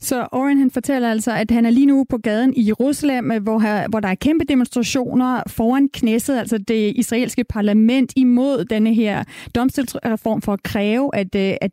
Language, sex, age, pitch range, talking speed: Danish, female, 30-49, 215-255 Hz, 180 wpm